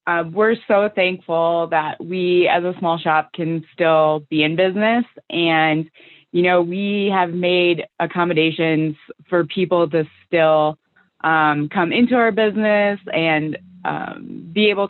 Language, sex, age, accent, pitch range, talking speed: English, female, 20-39, American, 160-190 Hz, 140 wpm